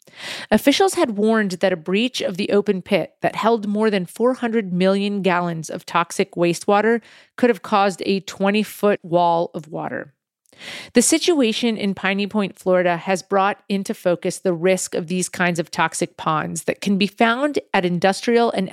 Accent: American